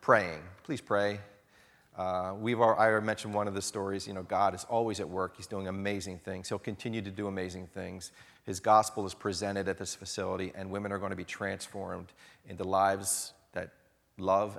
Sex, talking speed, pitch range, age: male, 195 wpm, 95-110 Hz, 40-59